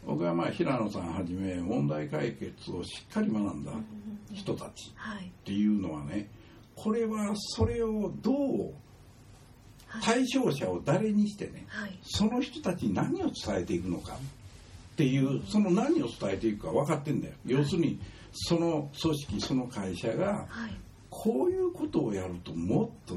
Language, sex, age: Japanese, male, 60-79